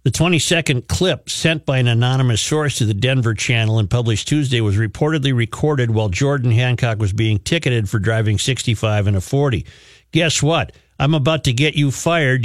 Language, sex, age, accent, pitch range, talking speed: English, male, 50-69, American, 105-135 Hz, 185 wpm